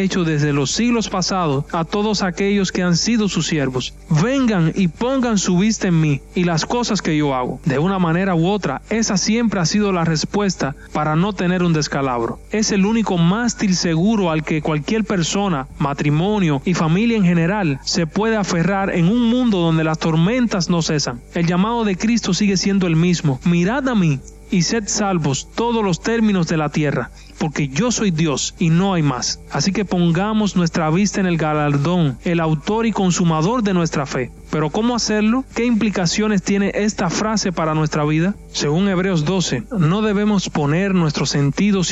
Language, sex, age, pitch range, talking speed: Spanish, male, 30-49, 155-200 Hz, 185 wpm